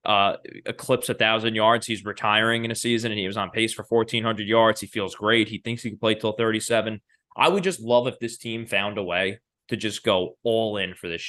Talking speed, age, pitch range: 240 wpm, 20-39, 110-145 Hz